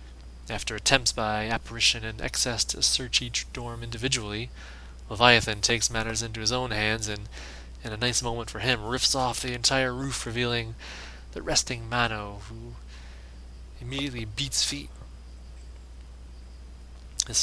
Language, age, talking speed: English, 20-39, 135 wpm